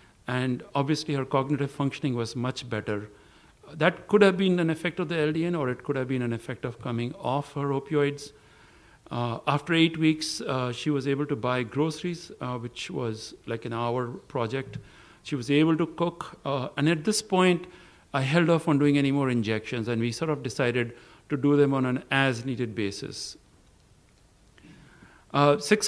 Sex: male